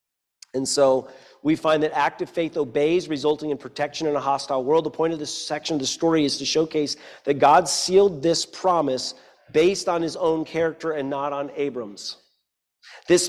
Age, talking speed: 40-59, 185 wpm